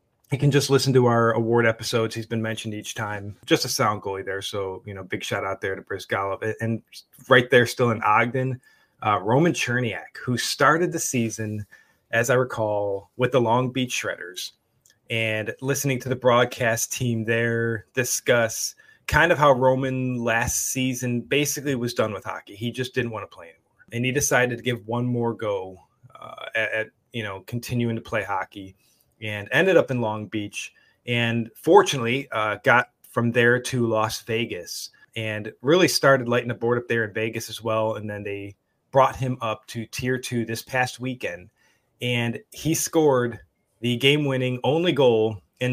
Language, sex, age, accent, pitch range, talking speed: English, male, 20-39, American, 110-125 Hz, 185 wpm